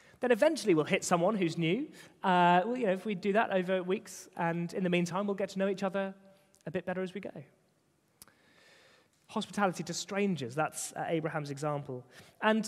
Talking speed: 190 wpm